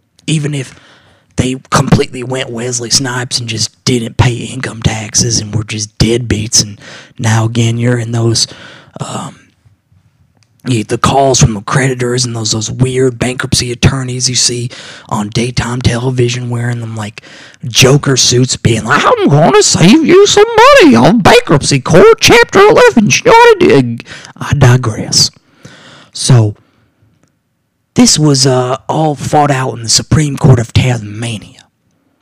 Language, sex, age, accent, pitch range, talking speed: English, male, 30-49, American, 115-140 Hz, 140 wpm